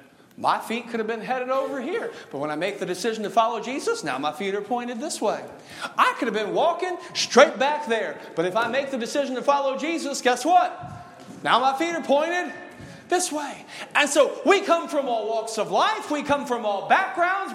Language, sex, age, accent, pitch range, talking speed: English, male, 40-59, American, 200-285 Hz, 220 wpm